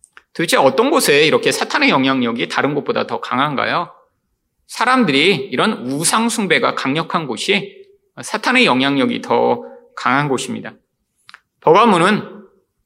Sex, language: male, Korean